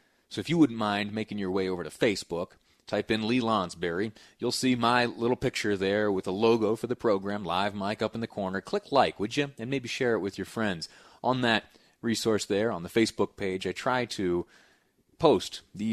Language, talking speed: English, 215 wpm